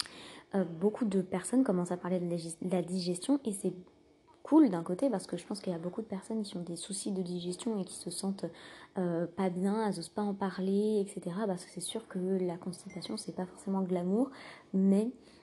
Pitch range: 180-215 Hz